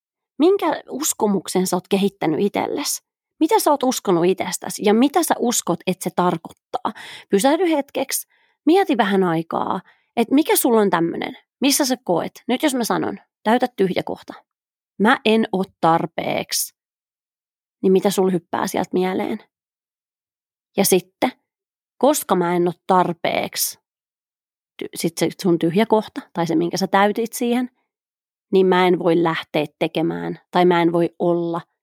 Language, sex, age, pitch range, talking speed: Finnish, female, 30-49, 175-250 Hz, 145 wpm